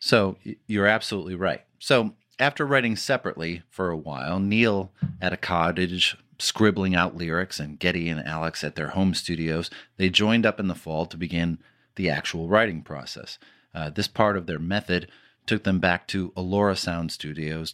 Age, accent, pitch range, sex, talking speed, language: 30-49, American, 85-110 Hz, male, 175 wpm, English